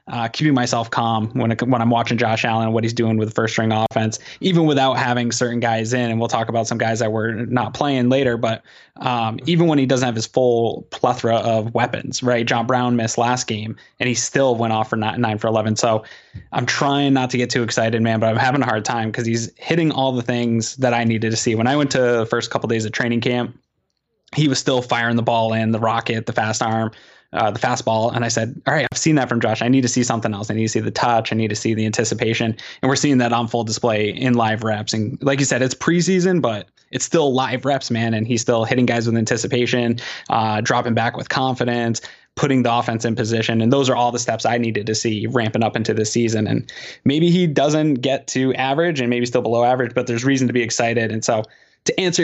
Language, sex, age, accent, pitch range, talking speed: English, male, 20-39, American, 115-130 Hz, 255 wpm